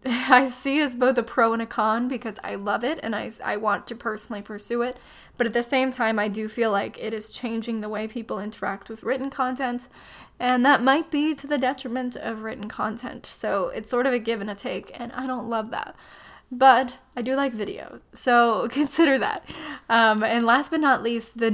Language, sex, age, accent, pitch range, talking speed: English, female, 10-29, American, 215-250 Hz, 220 wpm